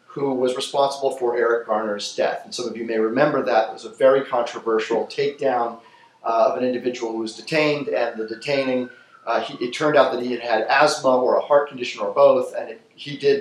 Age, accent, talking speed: 40-59, American, 215 wpm